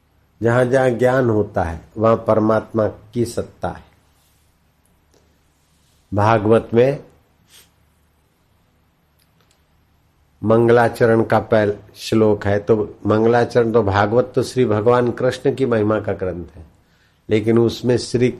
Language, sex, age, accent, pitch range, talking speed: Hindi, male, 60-79, native, 85-120 Hz, 105 wpm